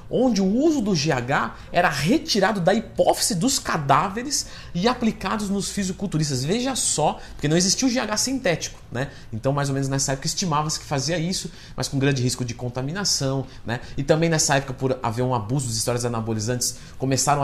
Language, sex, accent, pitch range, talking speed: Portuguese, male, Brazilian, 120-165 Hz, 180 wpm